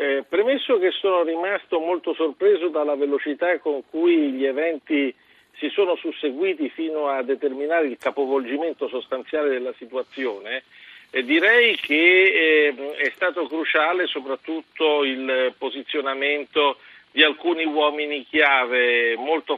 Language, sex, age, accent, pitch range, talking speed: Italian, male, 50-69, native, 135-170 Hz, 120 wpm